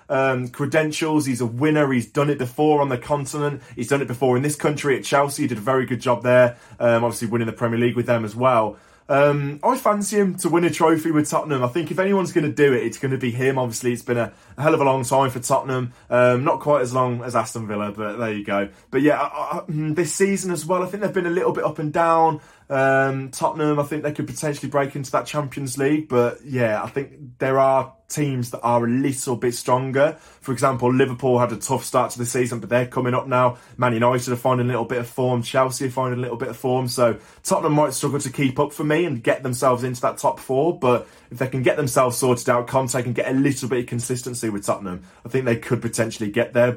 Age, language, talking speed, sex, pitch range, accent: 20-39, English, 255 wpm, male, 120-145 Hz, British